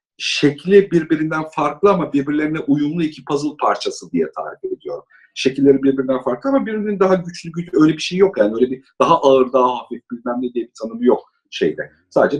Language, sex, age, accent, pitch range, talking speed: Turkish, male, 50-69, native, 130-200 Hz, 190 wpm